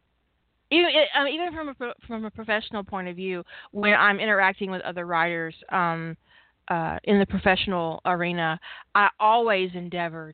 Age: 30-49